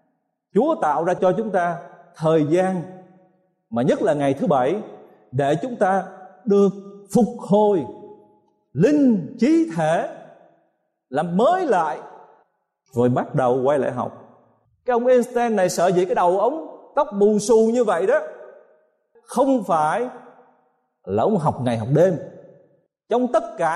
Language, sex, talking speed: Vietnamese, male, 145 wpm